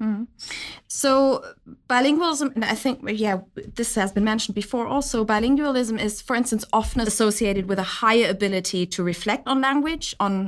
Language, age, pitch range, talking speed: German, 20-39, 190-235 Hz, 160 wpm